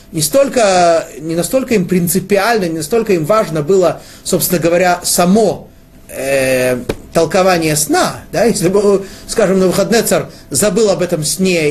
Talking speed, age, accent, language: 145 wpm, 30-49, native, Russian